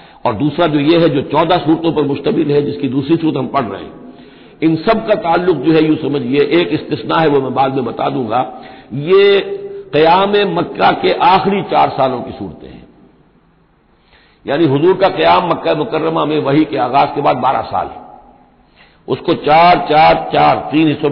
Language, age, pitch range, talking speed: Hindi, 60-79, 140-175 Hz, 185 wpm